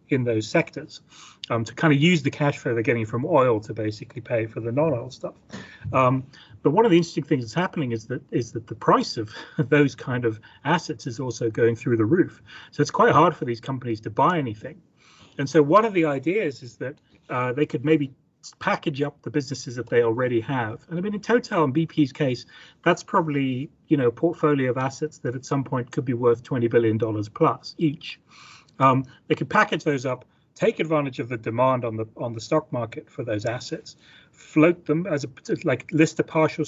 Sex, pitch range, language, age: male, 120-155 Hz, English, 30-49